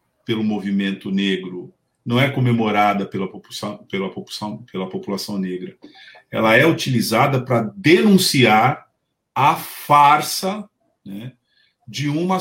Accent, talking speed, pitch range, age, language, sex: Brazilian, 115 wpm, 105-145 Hz, 50-69, Portuguese, male